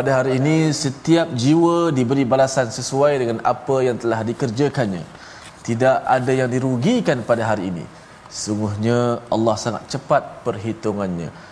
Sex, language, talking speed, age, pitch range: male, Malayalam, 130 wpm, 20-39, 105-130 Hz